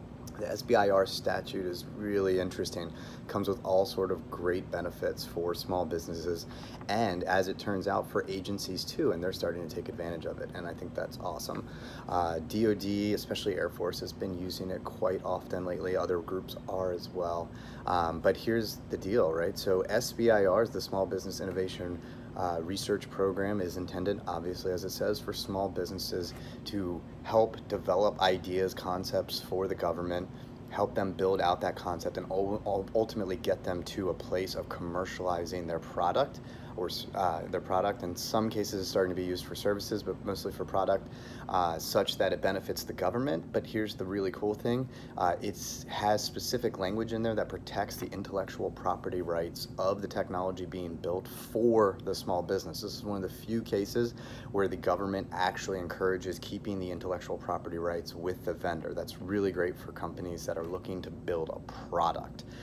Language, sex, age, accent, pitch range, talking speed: English, male, 30-49, American, 90-105 Hz, 180 wpm